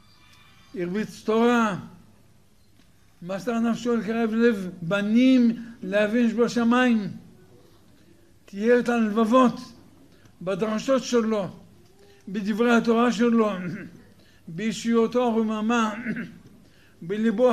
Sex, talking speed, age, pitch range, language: male, 70 wpm, 60-79, 170-230 Hz, Hebrew